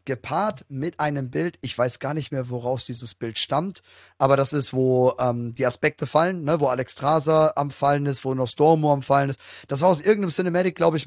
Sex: male